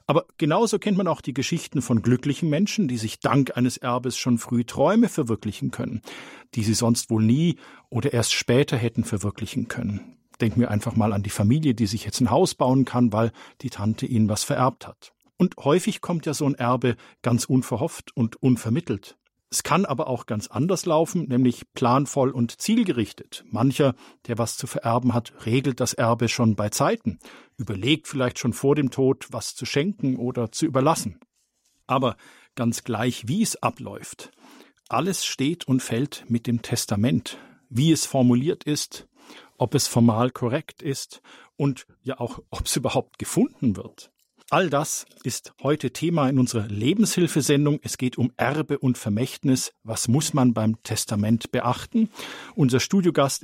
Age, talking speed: 50-69, 170 wpm